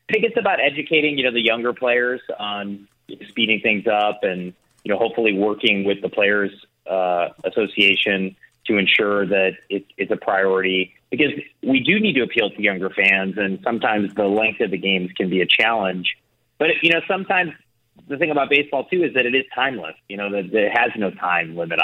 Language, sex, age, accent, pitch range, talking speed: English, male, 30-49, American, 95-120 Hz, 200 wpm